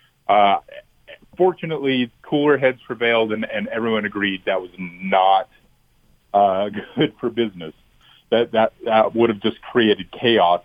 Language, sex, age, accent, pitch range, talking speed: English, male, 30-49, American, 95-130 Hz, 135 wpm